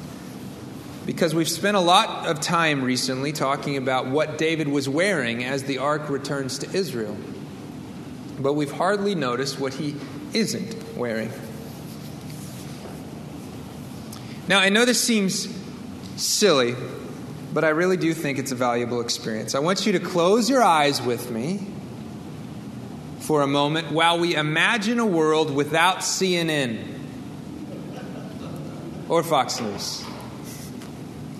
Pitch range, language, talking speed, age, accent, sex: 145-185 Hz, English, 125 wpm, 30-49, American, male